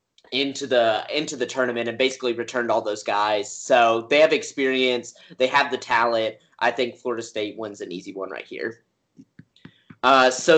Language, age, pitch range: English, 20-39, 125-150 Hz